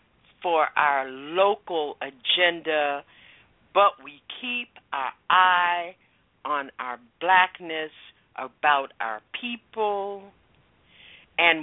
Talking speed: 85 wpm